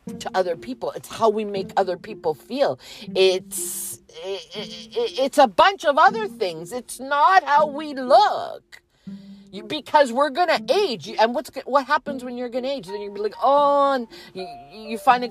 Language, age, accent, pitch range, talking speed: English, 40-59, American, 175-260 Hz, 180 wpm